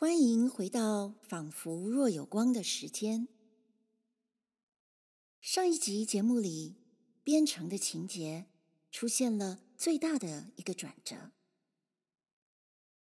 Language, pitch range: Chinese, 190-290 Hz